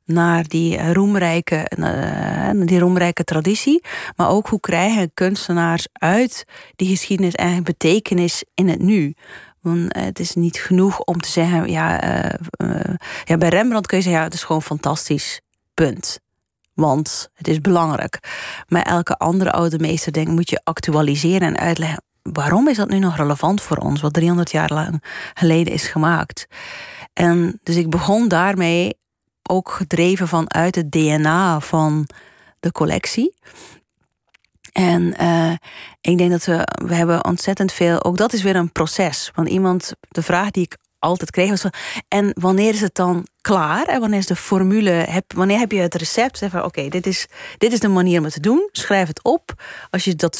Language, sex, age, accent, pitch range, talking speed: Dutch, female, 30-49, Dutch, 165-195 Hz, 175 wpm